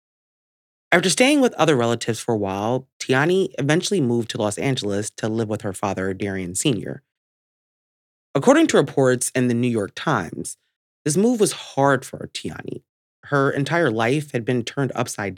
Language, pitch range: English, 110-150 Hz